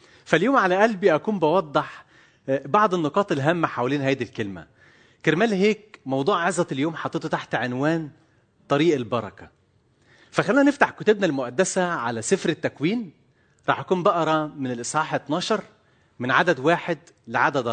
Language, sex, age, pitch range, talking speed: Arabic, male, 30-49, 125-175 Hz, 130 wpm